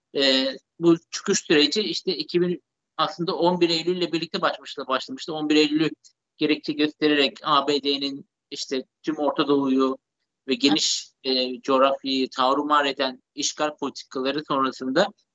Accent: native